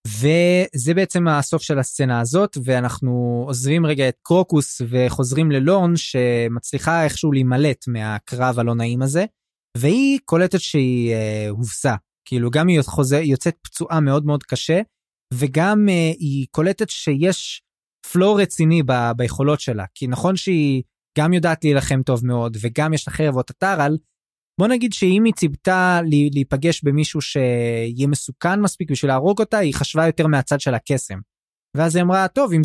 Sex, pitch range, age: male, 130-175 Hz, 20-39